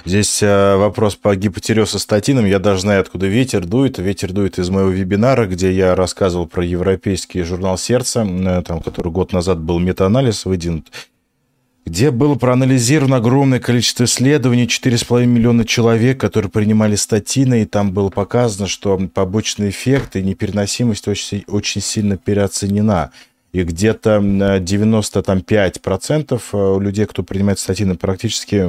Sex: male